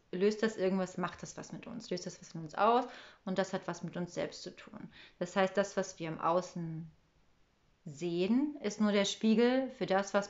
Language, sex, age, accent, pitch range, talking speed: German, female, 30-49, German, 175-200 Hz, 220 wpm